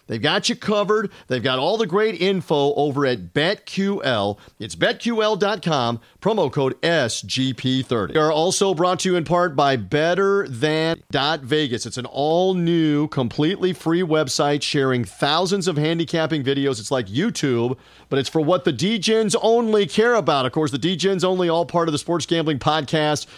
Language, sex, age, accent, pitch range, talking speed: English, male, 40-59, American, 135-175 Hz, 165 wpm